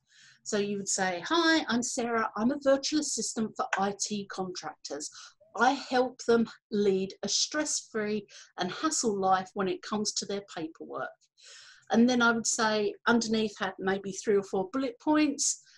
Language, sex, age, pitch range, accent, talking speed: English, female, 50-69, 220-310 Hz, British, 160 wpm